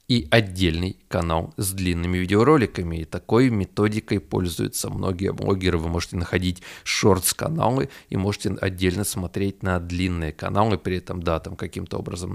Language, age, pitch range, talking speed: Russian, 20-39, 90-110 Hz, 140 wpm